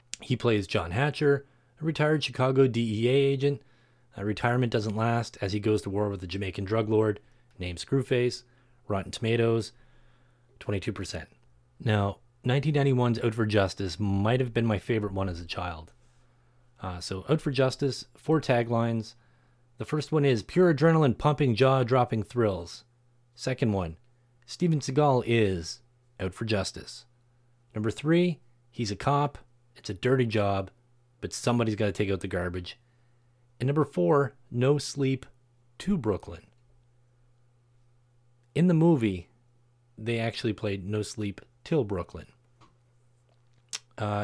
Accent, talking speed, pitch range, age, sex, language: American, 135 wpm, 105-130 Hz, 30-49, male, English